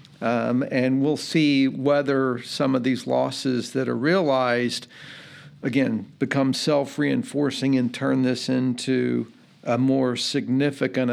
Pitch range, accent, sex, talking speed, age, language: 130-150 Hz, American, male, 120 wpm, 50-69, English